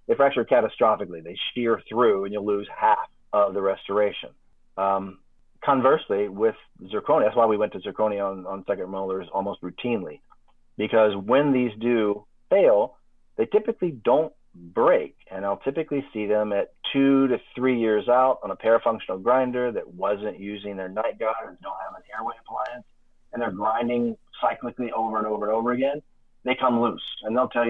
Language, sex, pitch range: English, male, 105-155 Hz